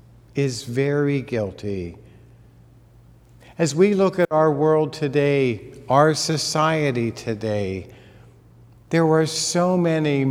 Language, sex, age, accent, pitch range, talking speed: English, male, 50-69, American, 120-165 Hz, 100 wpm